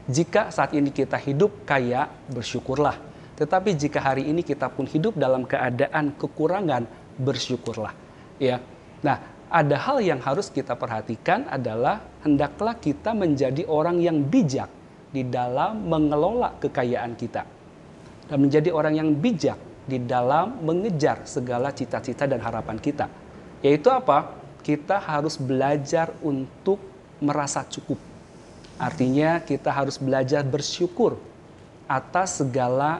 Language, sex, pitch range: Indonesian, male, 130-155 Hz